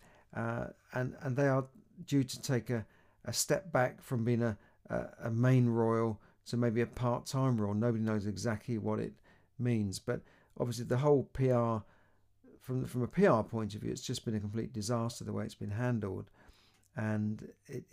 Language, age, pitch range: English, 50-69, 105-125 Hz